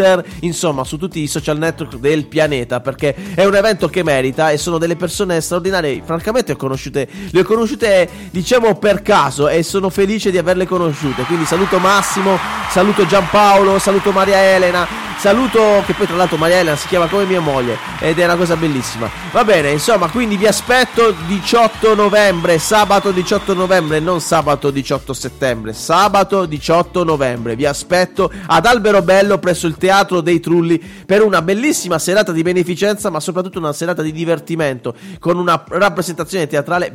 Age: 30-49